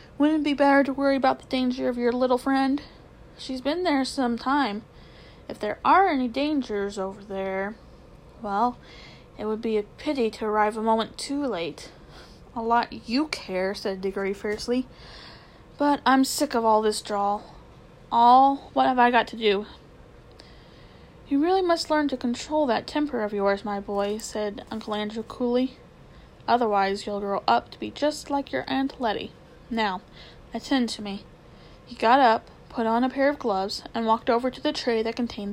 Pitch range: 210-270 Hz